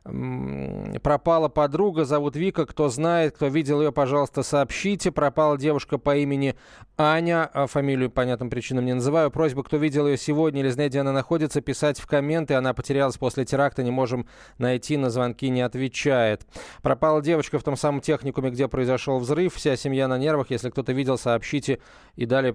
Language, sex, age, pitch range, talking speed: Russian, male, 20-39, 125-145 Hz, 170 wpm